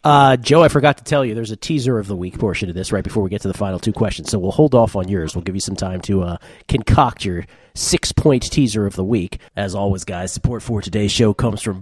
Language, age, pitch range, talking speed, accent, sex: English, 30-49, 100-130 Hz, 275 wpm, American, male